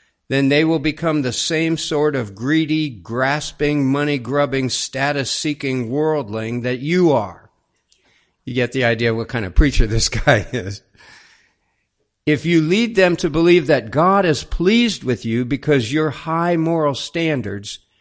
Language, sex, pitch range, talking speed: English, male, 115-155 Hz, 145 wpm